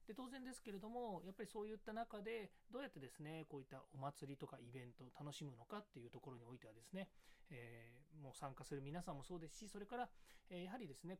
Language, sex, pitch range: Japanese, male, 130-190 Hz